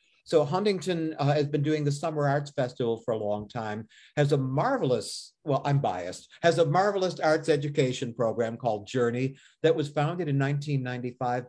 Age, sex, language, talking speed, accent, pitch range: 50-69, male, English, 170 wpm, American, 125-150 Hz